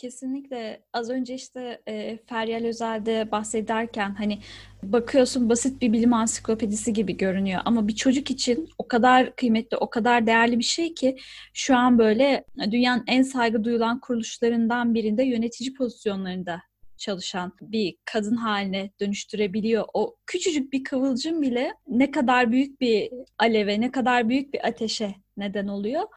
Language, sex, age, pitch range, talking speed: Turkish, female, 10-29, 220-260 Hz, 140 wpm